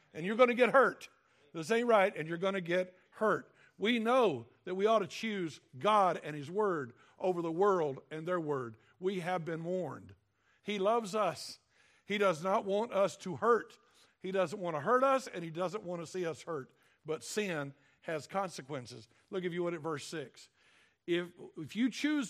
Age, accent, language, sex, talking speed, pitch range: 50-69, American, English, male, 200 wpm, 170-240 Hz